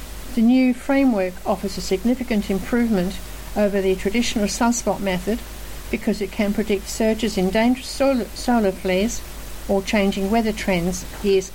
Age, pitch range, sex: 60-79, 200-245 Hz, female